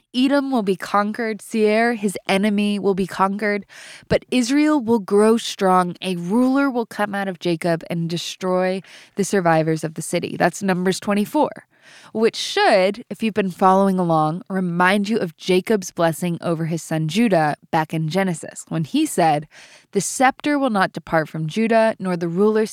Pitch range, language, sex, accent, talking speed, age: 170-225 Hz, English, female, American, 170 wpm, 20-39